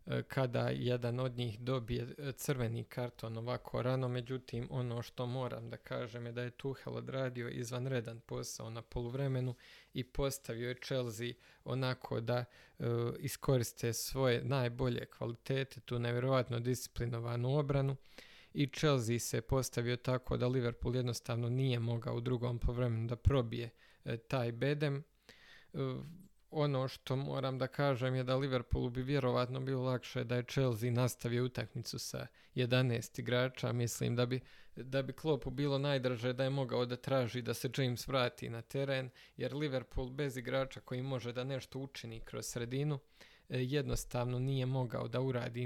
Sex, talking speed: male, 150 wpm